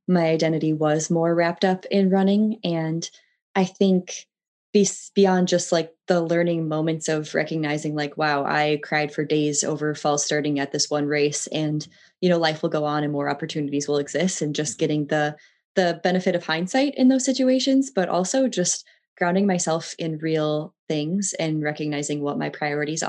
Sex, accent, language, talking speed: female, American, English, 175 wpm